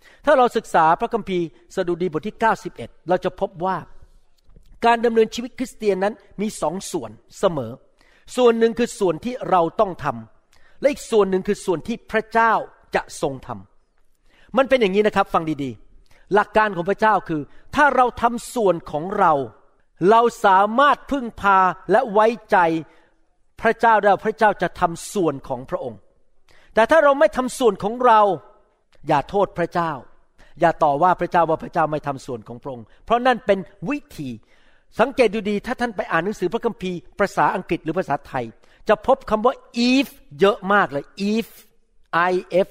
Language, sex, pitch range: Thai, male, 170-235 Hz